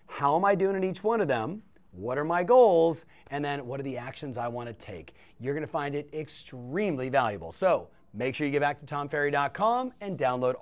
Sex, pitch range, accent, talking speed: male, 130-205 Hz, American, 215 wpm